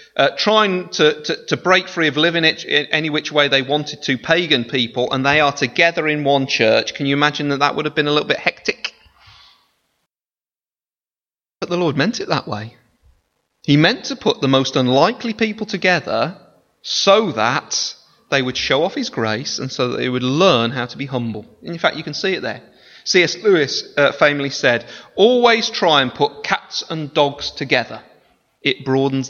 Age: 30-49